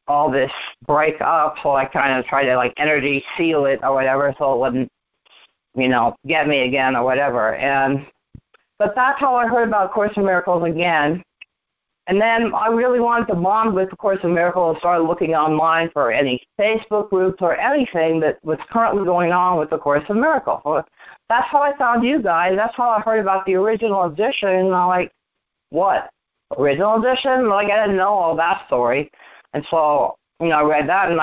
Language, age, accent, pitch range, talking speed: English, 50-69, American, 155-215 Hz, 200 wpm